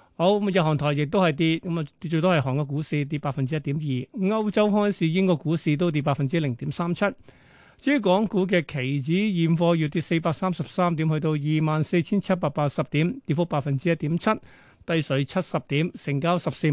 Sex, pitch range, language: male, 150-185 Hz, Chinese